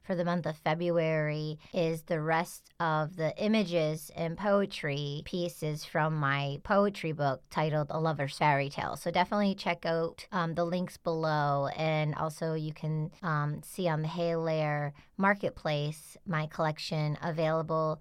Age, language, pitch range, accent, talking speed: 30-49, English, 155-175 Hz, American, 150 wpm